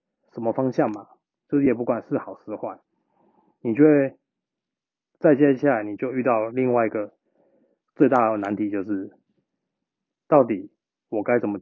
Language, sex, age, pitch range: Chinese, male, 20-39, 110-140 Hz